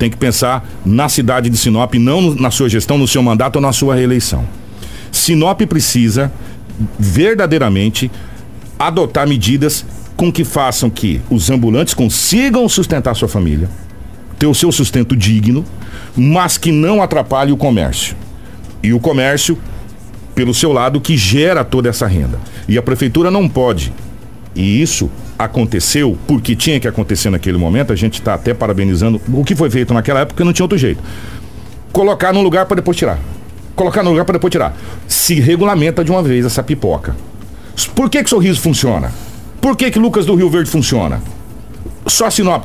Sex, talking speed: male, 165 wpm